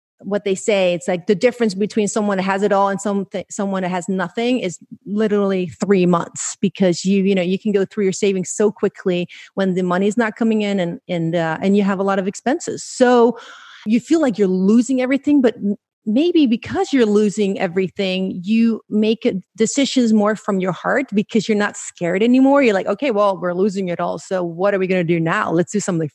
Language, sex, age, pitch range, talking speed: English, female, 30-49, 180-225 Hz, 220 wpm